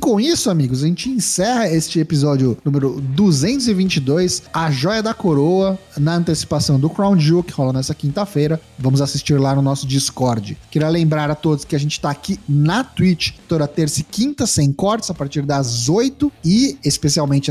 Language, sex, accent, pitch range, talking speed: Portuguese, male, Brazilian, 145-185 Hz, 180 wpm